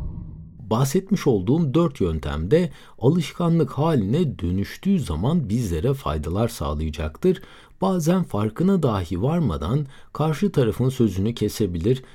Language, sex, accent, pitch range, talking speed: Turkish, male, native, 95-155 Hz, 95 wpm